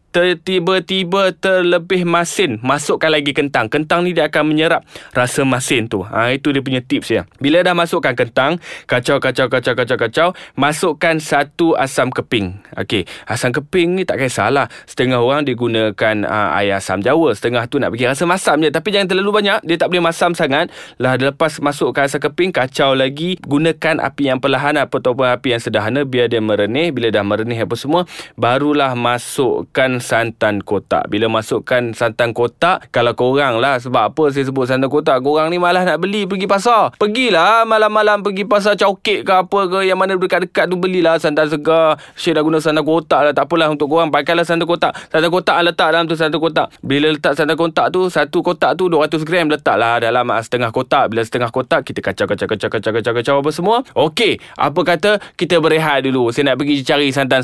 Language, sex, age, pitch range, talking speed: Malay, male, 20-39, 130-175 Hz, 180 wpm